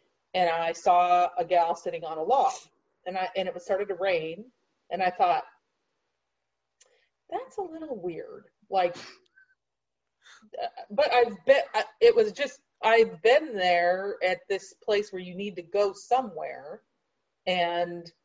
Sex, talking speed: female, 145 wpm